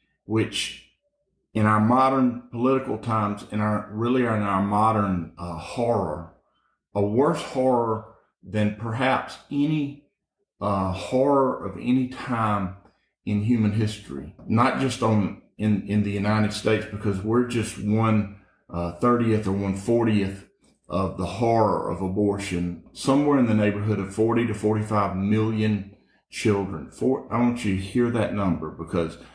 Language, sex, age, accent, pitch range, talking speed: English, male, 50-69, American, 95-115 Hz, 145 wpm